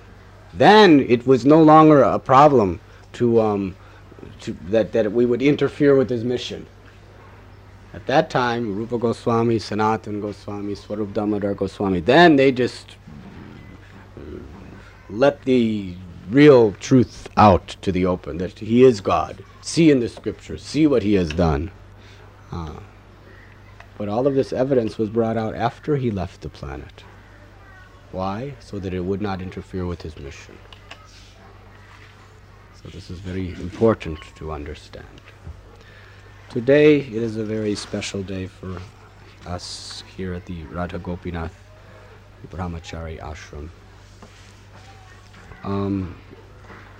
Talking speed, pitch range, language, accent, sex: 130 wpm, 95-110 Hz, English, American, male